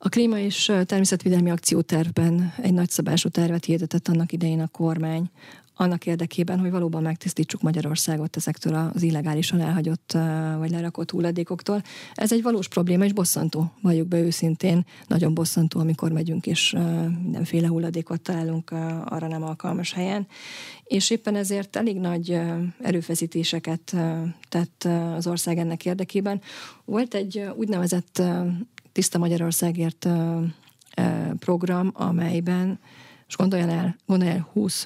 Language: Hungarian